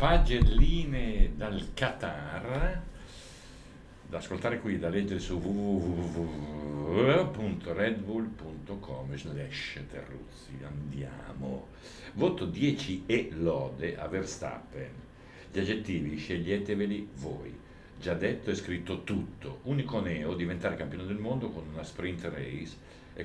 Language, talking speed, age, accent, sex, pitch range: Italian, 100 wpm, 60-79, native, male, 85-110 Hz